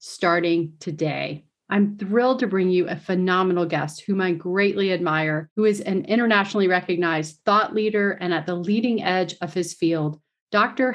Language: English